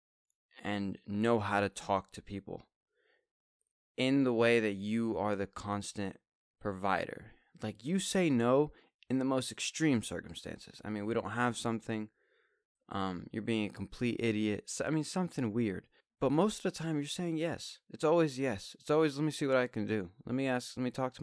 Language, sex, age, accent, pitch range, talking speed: English, male, 20-39, American, 105-140 Hz, 190 wpm